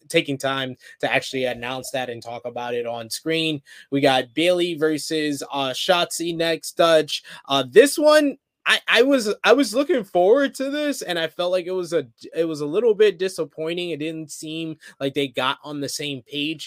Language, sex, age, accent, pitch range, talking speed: English, male, 20-39, American, 135-155 Hz, 200 wpm